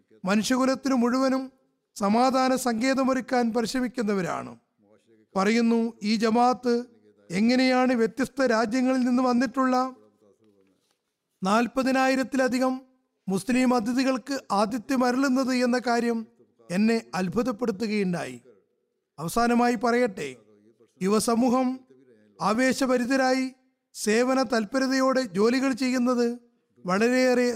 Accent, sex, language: native, male, Malayalam